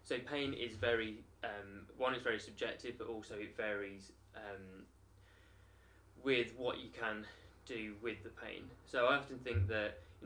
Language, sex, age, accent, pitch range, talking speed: English, male, 20-39, British, 100-115 Hz, 165 wpm